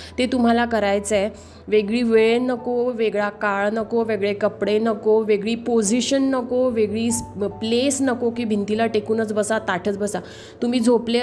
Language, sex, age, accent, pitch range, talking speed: Marathi, female, 20-39, native, 205-235 Hz, 145 wpm